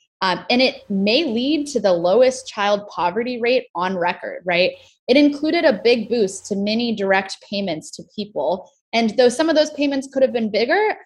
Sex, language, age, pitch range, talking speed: female, English, 20-39, 195-280 Hz, 190 wpm